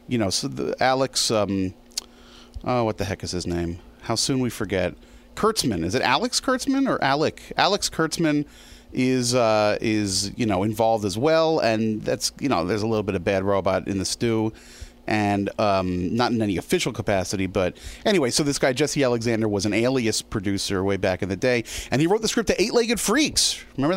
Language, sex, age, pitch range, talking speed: English, male, 30-49, 105-165 Hz, 200 wpm